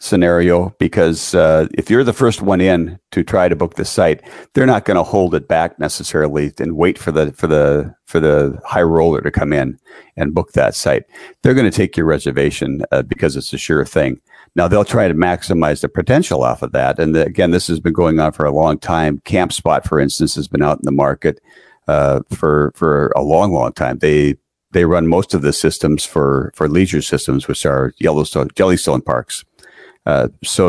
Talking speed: 215 wpm